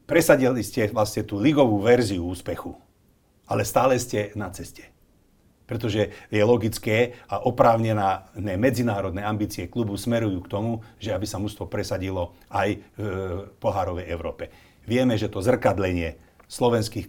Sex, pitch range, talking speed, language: male, 100-120 Hz, 130 wpm, Slovak